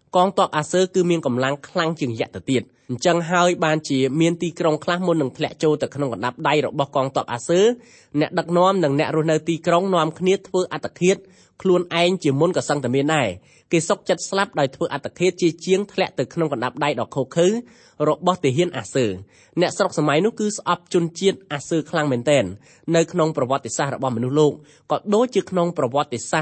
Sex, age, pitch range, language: male, 20-39, 140-180 Hz, English